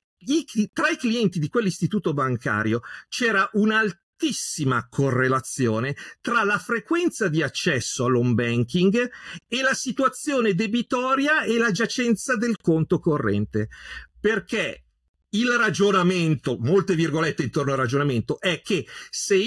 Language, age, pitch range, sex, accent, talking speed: Italian, 50-69, 155-225 Hz, male, native, 115 wpm